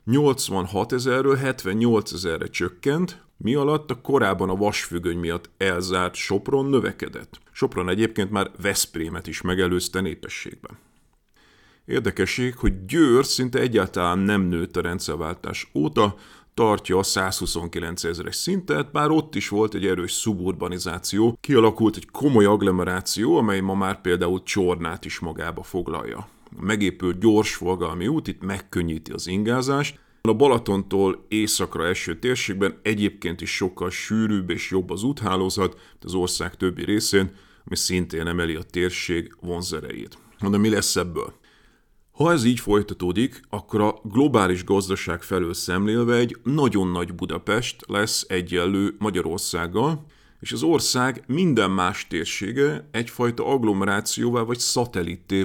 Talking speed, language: 130 wpm, Hungarian